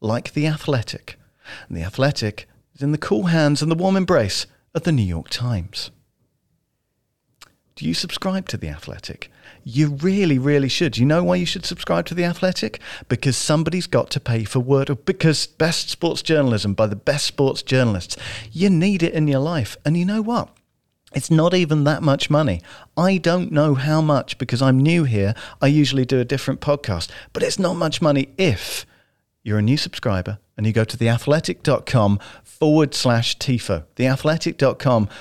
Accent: British